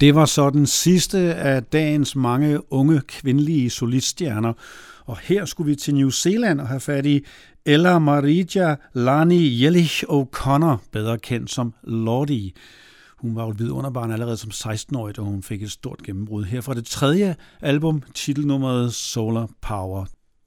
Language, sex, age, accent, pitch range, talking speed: Danish, male, 60-79, native, 120-155 Hz, 155 wpm